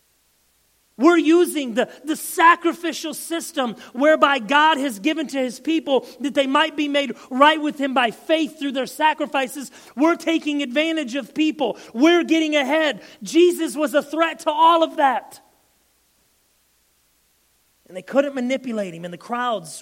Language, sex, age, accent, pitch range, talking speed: English, male, 40-59, American, 200-295 Hz, 150 wpm